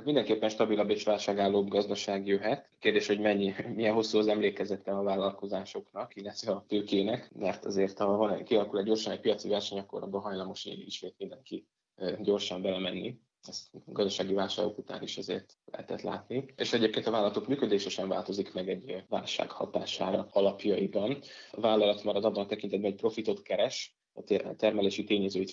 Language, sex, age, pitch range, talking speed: Hungarian, male, 20-39, 100-110 Hz, 150 wpm